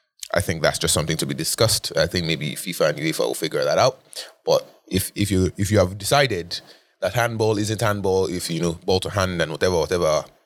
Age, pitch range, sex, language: 20-39, 90-125 Hz, male, English